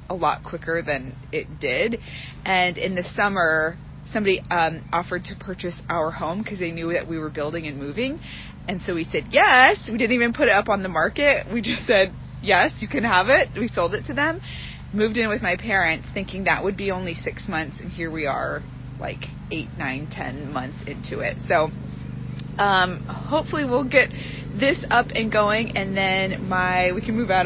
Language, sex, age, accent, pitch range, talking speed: English, female, 20-39, American, 160-195 Hz, 200 wpm